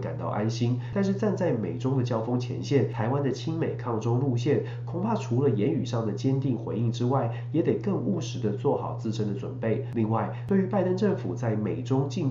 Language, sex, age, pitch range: Chinese, male, 30-49, 115-135 Hz